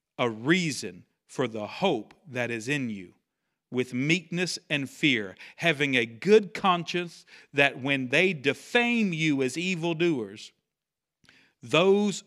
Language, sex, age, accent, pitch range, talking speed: English, male, 50-69, American, 120-155 Hz, 120 wpm